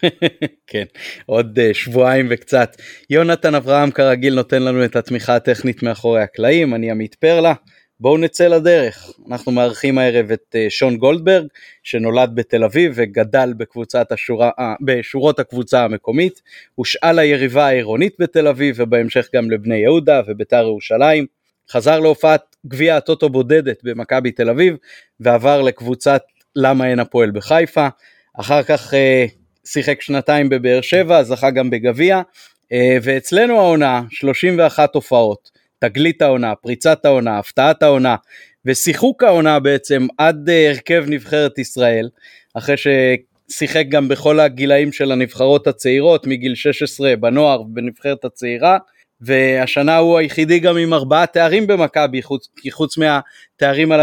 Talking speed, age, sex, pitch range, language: 125 wpm, 30-49, male, 125-155 Hz, Hebrew